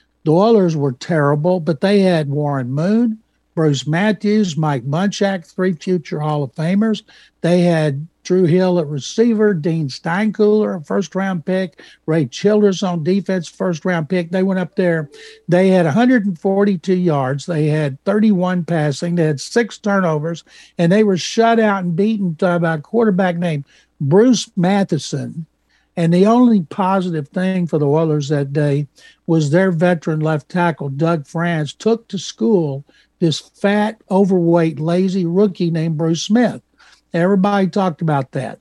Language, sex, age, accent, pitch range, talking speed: English, male, 60-79, American, 155-190 Hz, 150 wpm